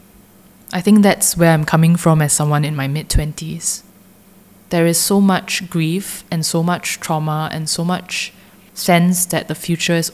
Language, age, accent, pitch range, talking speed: English, 10-29, Malaysian, 155-185 Hz, 170 wpm